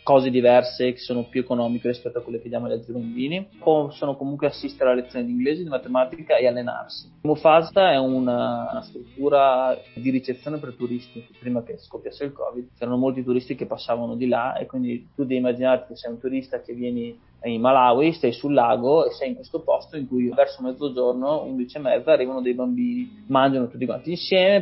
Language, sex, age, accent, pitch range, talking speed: Italian, male, 20-39, native, 125-155 Hz, 195 wpm